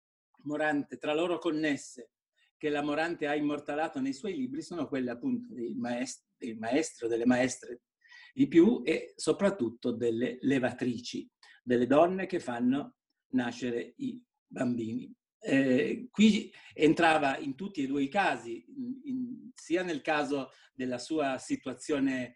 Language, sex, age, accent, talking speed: Italian, male, 50-69, native, 135 wpm